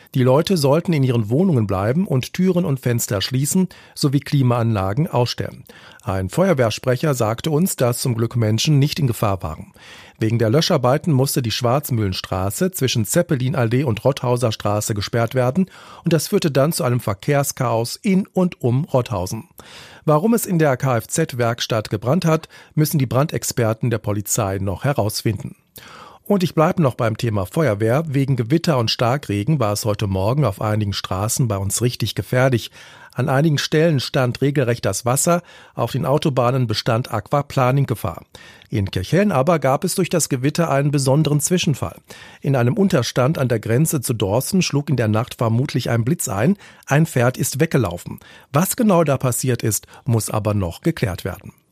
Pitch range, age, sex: 115-155 Hz, 40-59, male